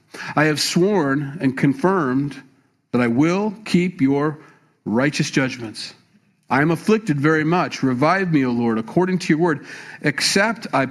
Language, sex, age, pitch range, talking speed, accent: English, male, 50-69, 125-170 Hz, 150 wpm, American